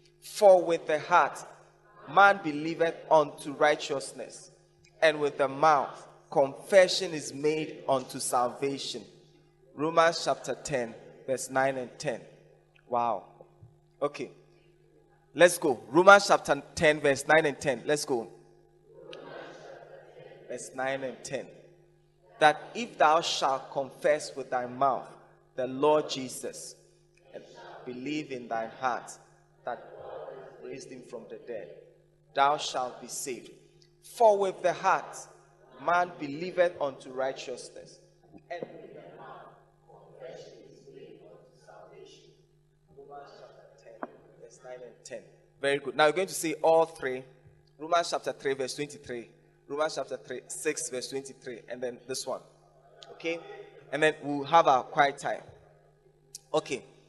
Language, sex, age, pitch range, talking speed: English, male, 20-39, 135-175 Hz, 125 wpm